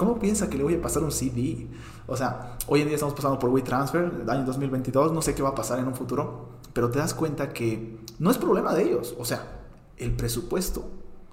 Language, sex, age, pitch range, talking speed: Spanish, male, 30-49, 115-140 Hz, 240 wpm